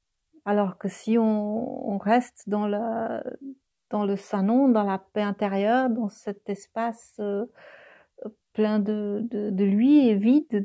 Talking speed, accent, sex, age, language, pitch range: 145 wpm, French, female, 40-59, French, 195-230 Hz